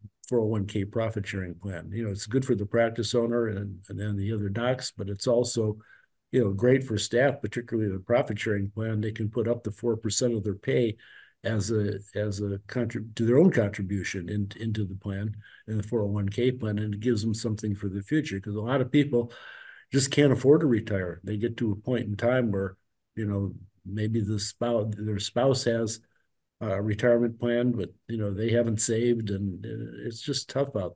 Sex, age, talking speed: male, 50-69, 205 wpm